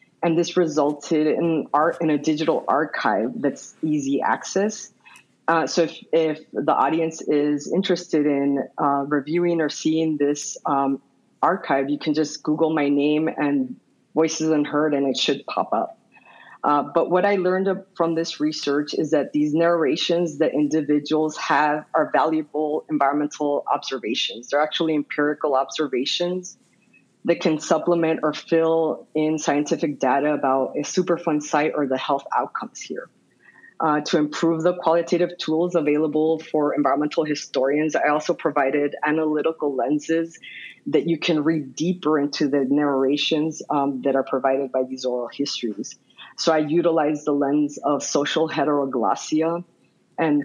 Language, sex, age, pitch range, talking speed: English, female, 30-49, 145-165 Hz, 145 wpm